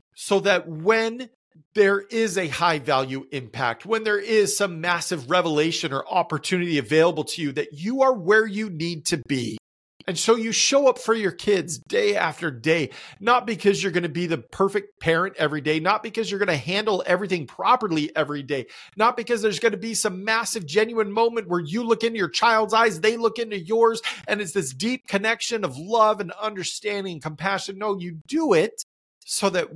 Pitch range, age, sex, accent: 170-230 Hz, 40-59, male, American